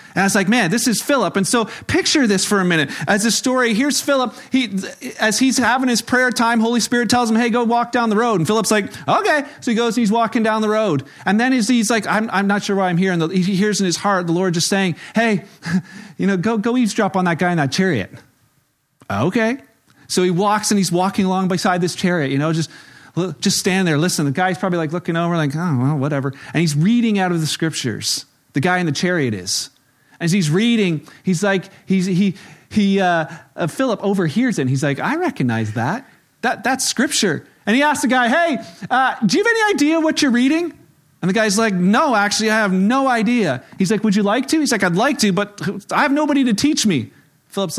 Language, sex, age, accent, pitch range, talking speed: English, male, 40-59, American, 165-225 Hz, 240 wpm